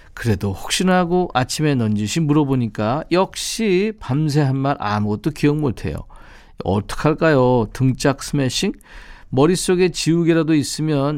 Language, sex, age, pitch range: Korean, male, 50-69, 110-165 Hz